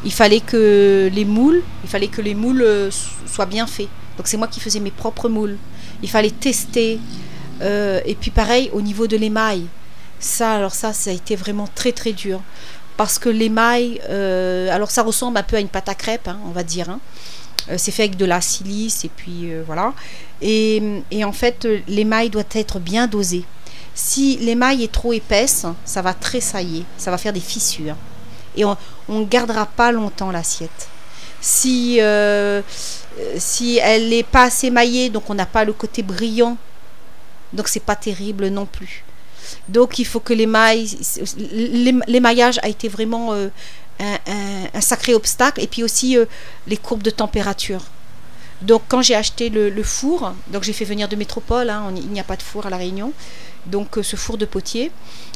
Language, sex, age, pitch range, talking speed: French, female, 40-59, 195-230 Hz, 190 wpm